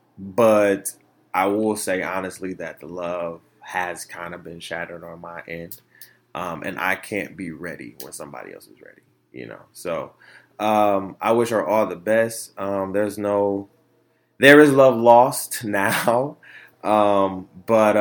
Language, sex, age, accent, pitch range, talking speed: English, male, 20-39, American, 95-120 Hz, 155 wpm